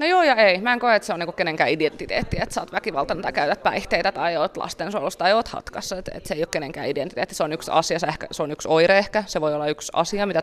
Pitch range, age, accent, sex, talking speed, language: 160-190 Hz, 20-39, native, female, 290 wpm, Finnish